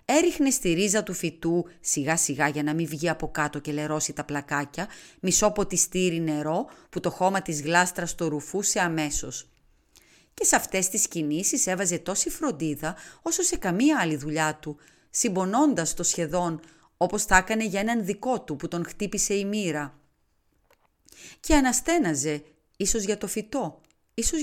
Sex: female